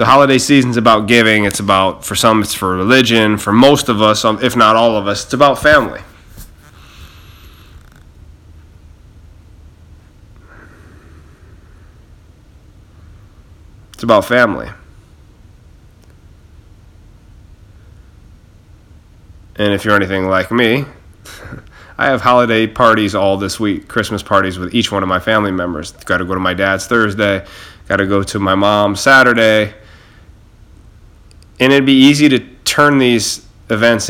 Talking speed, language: 120 wpm, English